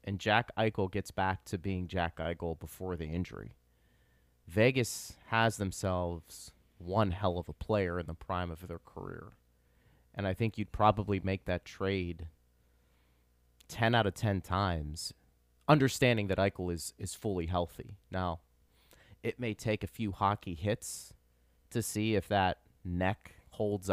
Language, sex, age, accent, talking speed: English, male, 30-49, American, 150 wpm